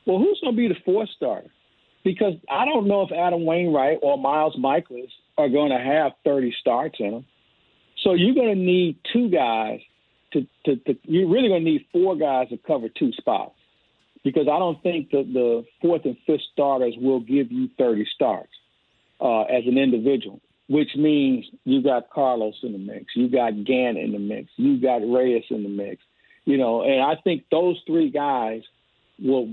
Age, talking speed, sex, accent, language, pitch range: 50-69, 195 wpm, male, American, English, 125-170 Hz